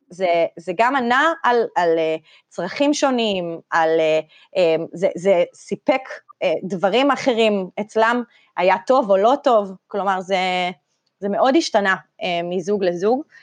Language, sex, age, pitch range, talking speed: Hebrew, female, 20-39, 180-255 Hz, 145 wpm